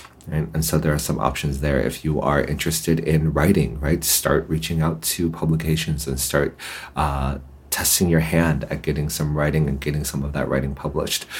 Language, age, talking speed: English, 30-49, 195 wpm